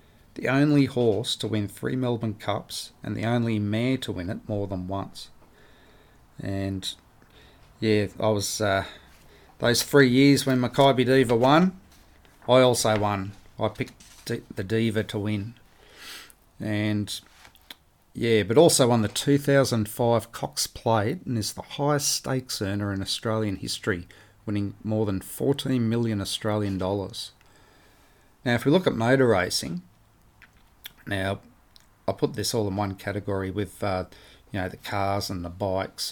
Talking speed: 145 wpm